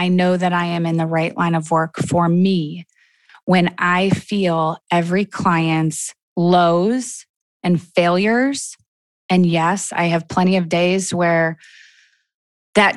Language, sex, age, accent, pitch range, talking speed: English, female, 20-39, American, 170-210 Hz, 140 wpm